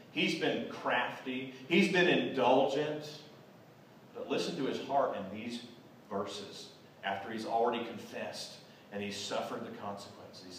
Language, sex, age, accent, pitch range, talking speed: English, male, 40-59, American, 135-180 Hz, 130 wpm